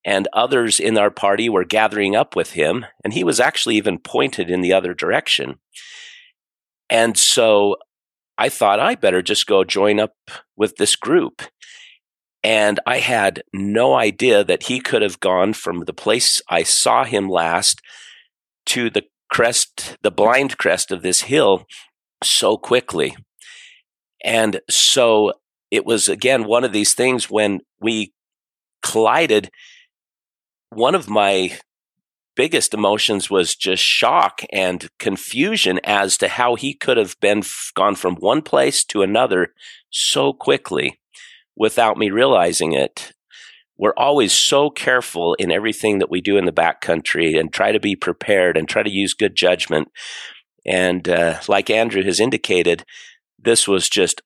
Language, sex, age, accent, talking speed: English, male, 40-59, American, 150 wpm